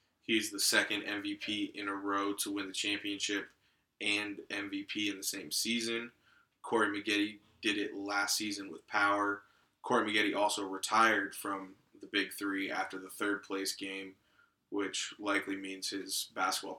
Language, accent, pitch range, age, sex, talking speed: English, American, 100-105 Hz, 20-39, male, 155 wpm